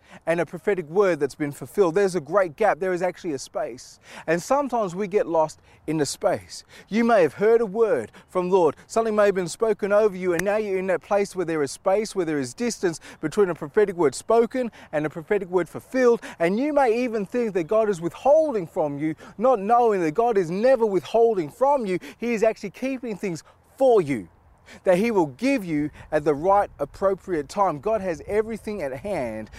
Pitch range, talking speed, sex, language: 160-230 Hz, 215 wpm, male, English